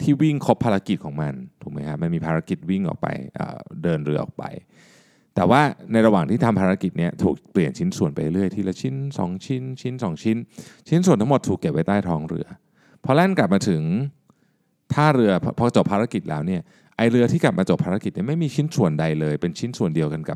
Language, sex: Thai, male